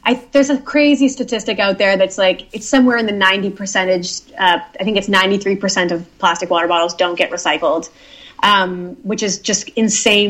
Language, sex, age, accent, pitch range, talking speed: English, female, 20-39, American, 180-230 Hz, 180 wpm